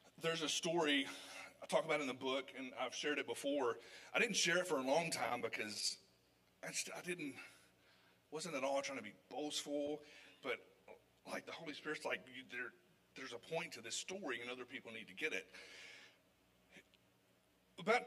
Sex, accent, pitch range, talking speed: male, American, 95-140 Hz, 185 wpm